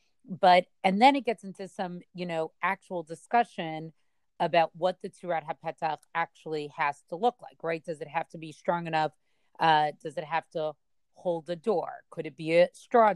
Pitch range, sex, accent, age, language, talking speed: 160-200 Hz, female, American, 30-49, English, 190 wpm